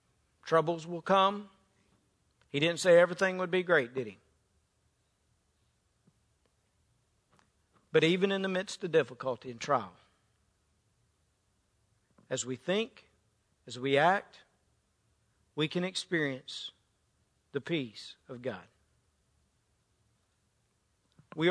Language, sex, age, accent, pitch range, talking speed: English, male, 50-69, American, 110-185 Hz, 100 wpm